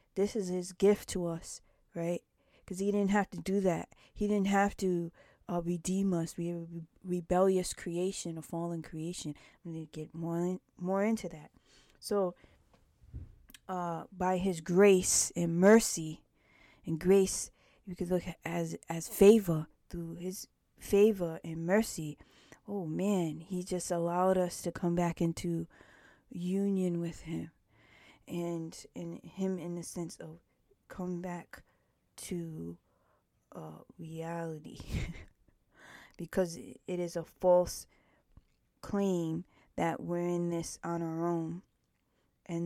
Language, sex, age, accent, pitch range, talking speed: English, female, 20-39, American, 165-190 Hz, 135 wpm